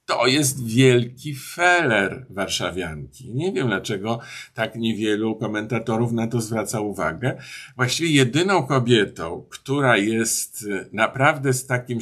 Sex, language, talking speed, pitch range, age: male, Polish, 115 wpm, 110-135 Hz, 50-69